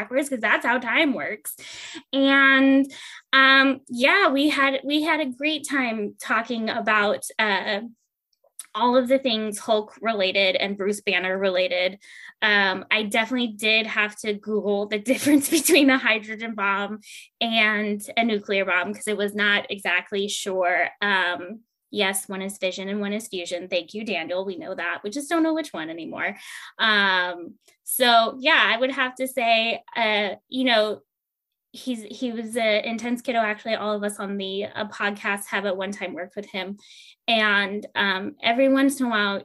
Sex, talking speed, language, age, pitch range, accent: female, 170 wpm, English, 10-29, 195-255 Hz, American